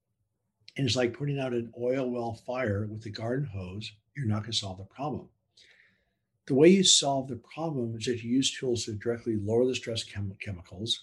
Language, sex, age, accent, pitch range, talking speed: English, male, 60-79, American, 110-135 Hz, 205 wpm